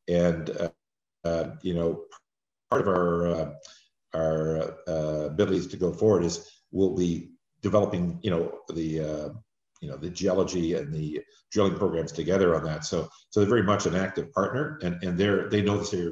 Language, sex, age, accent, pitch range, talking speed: English, male, 50-69, American, 85-100 Hz, 180 wpm